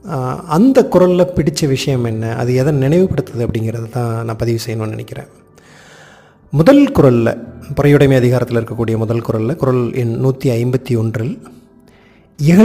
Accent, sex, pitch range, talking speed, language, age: native, male, 115-160 Hz, 115 wpm, Tamil, 30-49